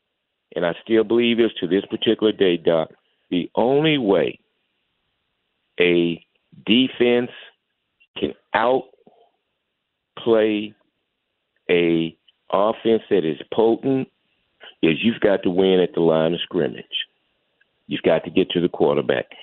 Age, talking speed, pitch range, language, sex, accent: 50-69, 120 wpm, 85-115 Hz, English, male, American